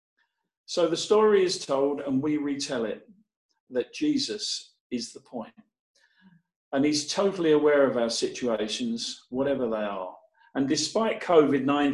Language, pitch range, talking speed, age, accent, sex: English, 145-215 Hz, 135 wpm, 50-69, British, male